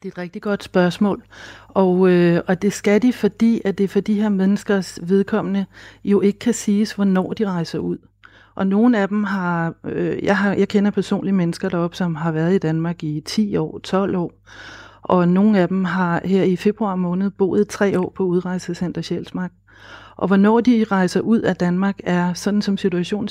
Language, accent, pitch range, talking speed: Danish, native, 175-205 Hz, 200 wpm